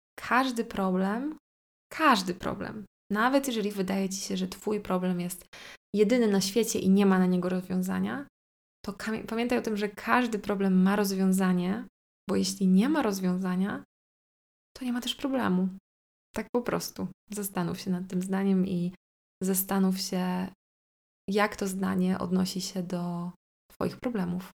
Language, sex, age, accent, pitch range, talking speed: Polish, female, 20-39, native, 190-225 Hz, 145 wpm